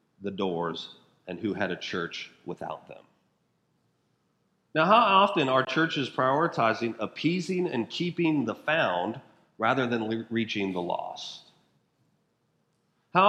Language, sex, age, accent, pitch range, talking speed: English, male, 40-59, American, 115-150 Hz, 115 wpm